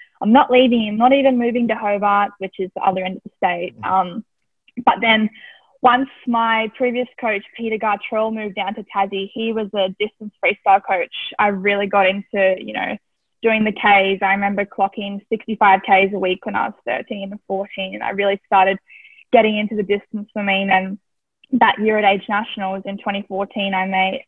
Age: 10-29